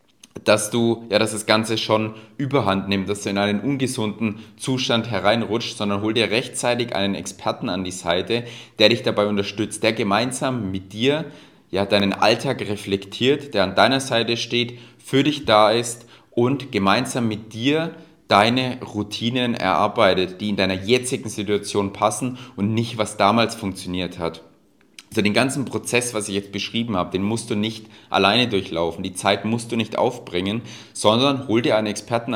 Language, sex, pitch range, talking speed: German, male, 100-120 Hz, 170 wpm